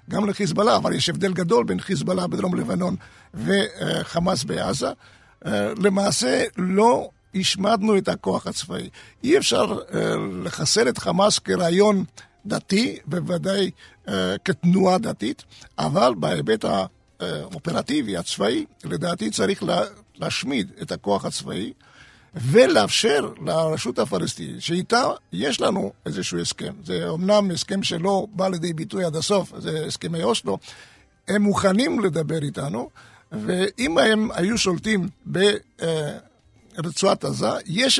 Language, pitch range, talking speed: Hebrew, 170-205 Hz, 110 wpm